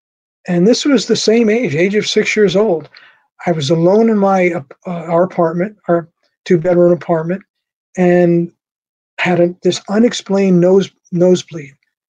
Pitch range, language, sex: 170-205 Hz, English, male